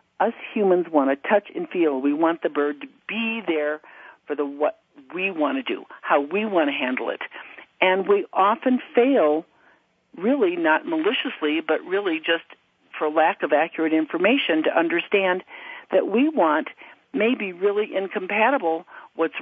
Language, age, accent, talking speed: English, 50-69, American, 160 wpm